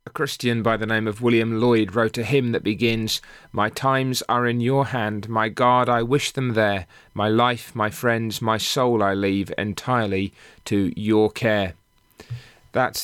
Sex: male